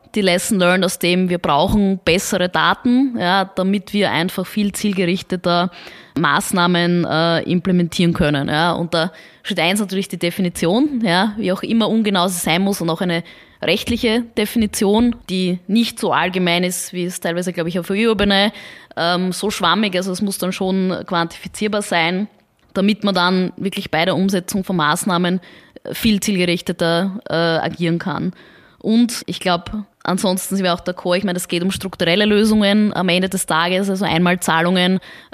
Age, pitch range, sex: 20-39, 175-200 Hz, female